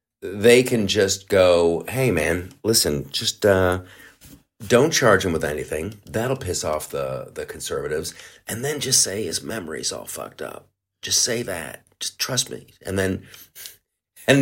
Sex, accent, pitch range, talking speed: male, American, 105-165 Hz, 160 wpm